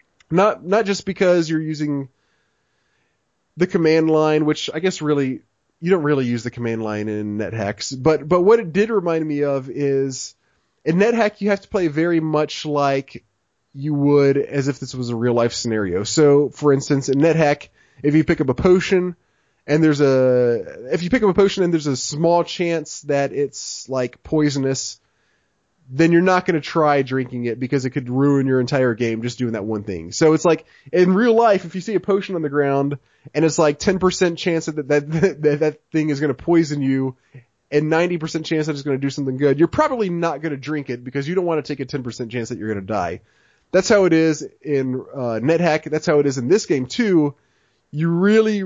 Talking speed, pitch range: 215 wpm, 135-170 Hz